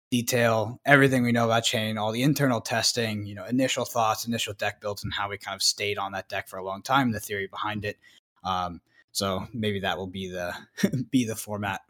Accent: American